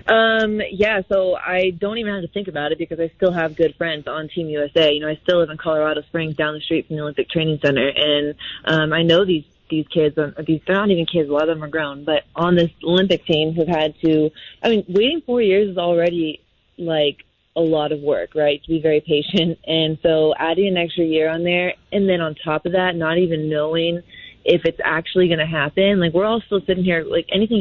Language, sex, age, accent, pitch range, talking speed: English, female, 20-39, American, 155-190 Hz, 240 wpm